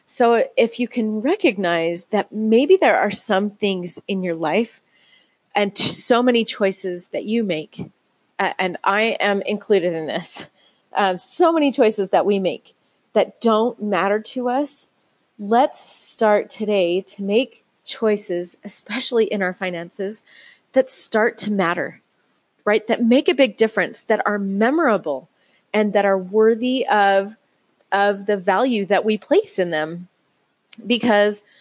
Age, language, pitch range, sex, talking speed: 30-49, English, 185-230 Hz, female, 145 wpm